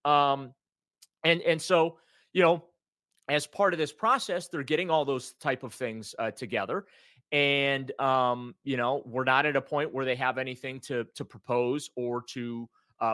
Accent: American